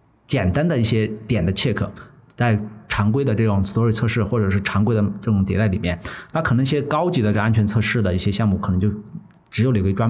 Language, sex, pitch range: Chinese, male, 100-130 Hz